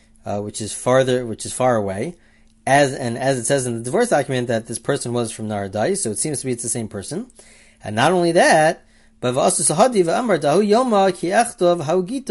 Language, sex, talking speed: English, male, 180 wpm